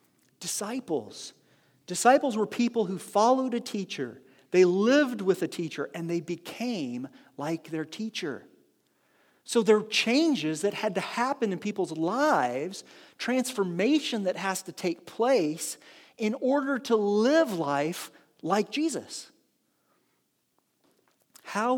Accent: American